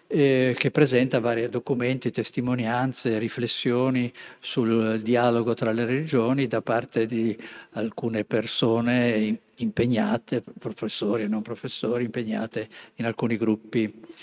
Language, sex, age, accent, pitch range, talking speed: Italian, male, 50-69, native, 110-125 Hz, 105 wpm